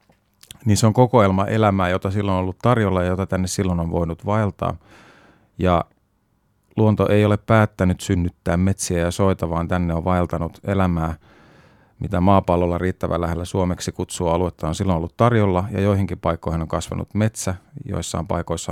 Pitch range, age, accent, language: 85-100 Hz, 30-49, native, Finnish